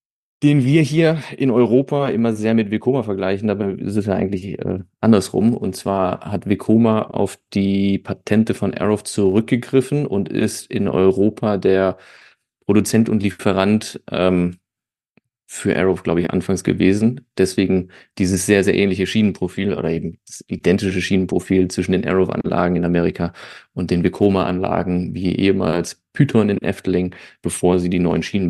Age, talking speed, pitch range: 30-49, 150 wpm, 95-115 Hz